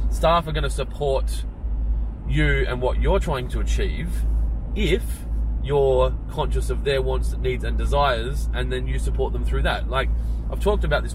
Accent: Australian